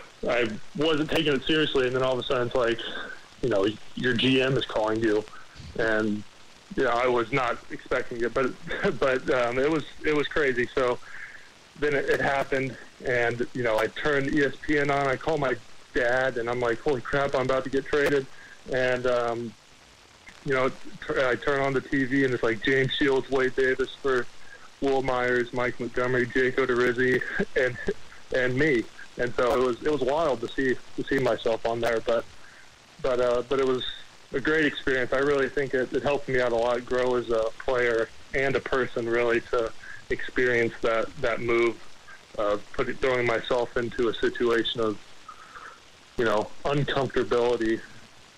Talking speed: 180 wpm